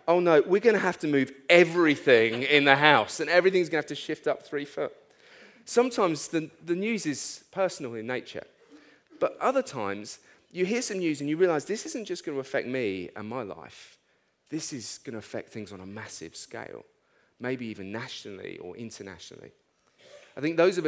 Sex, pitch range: male, 120-180 Hz